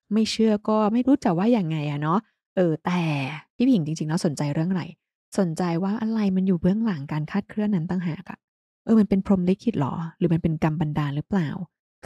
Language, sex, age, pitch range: Thai, female, 20-39, 170-215 Hz